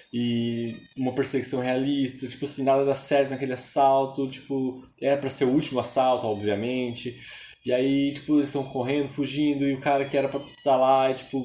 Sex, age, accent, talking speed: male, 20-39, Brazilian, 190 wpm